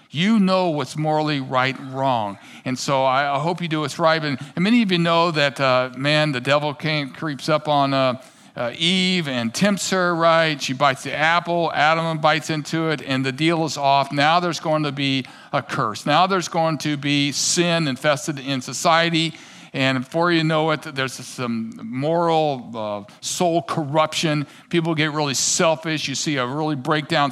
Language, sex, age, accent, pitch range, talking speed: English, male, 50-69, American, 135-165 Hz, 185 wpm